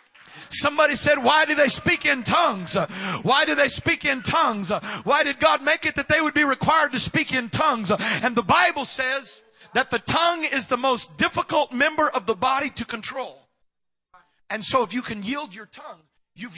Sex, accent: male, American